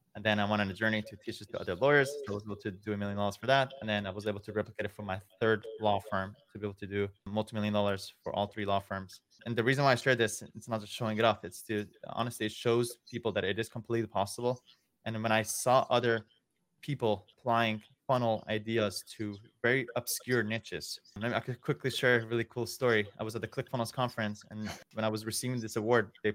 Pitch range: 105-120 Hz